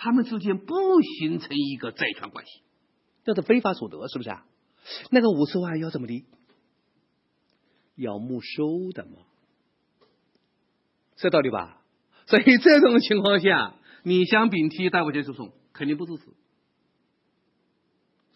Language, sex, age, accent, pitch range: Chinese, male, 50-69, native, 145-220 Hz